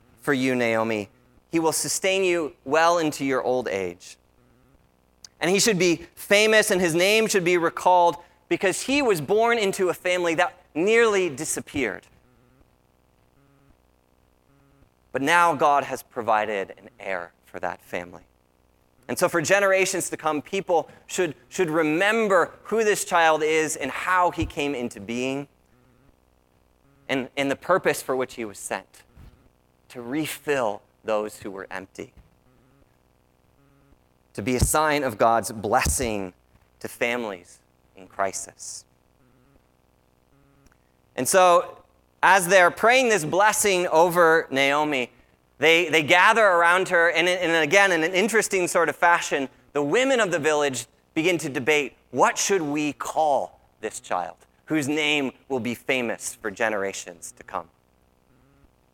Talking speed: 135 wpm